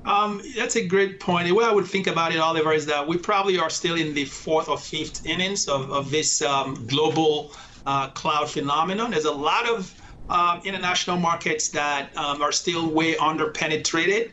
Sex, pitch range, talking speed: male, 140-170 Hz, 195 wpm